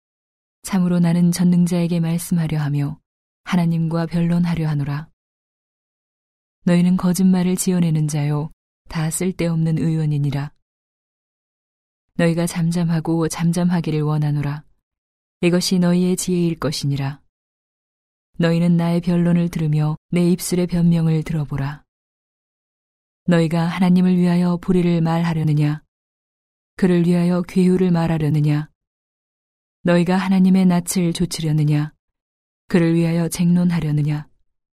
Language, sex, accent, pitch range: Korean, female, native, 150-180 Hz